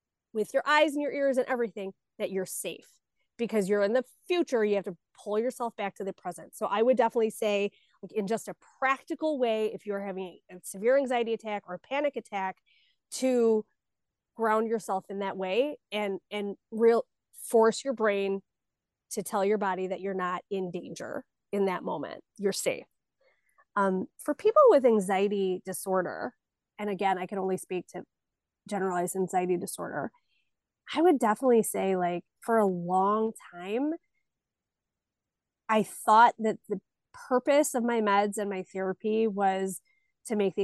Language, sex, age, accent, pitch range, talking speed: English, female, 20-39, American, 190-235 Hz, 165 wpm